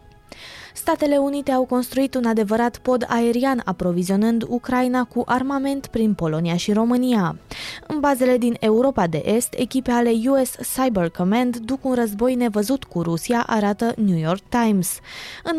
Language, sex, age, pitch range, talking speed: Romanian, female, 20-39, 200-255 Hz, 145 wpm